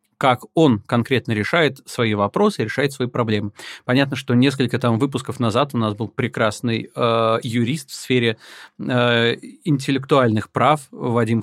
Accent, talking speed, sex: native, 140 wpm, male